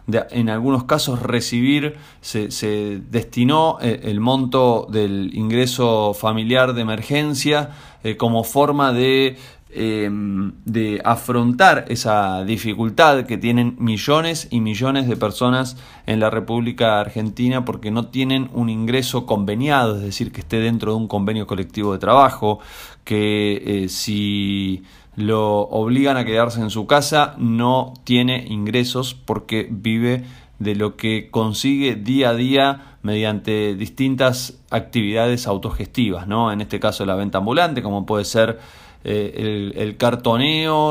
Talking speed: 135 wpm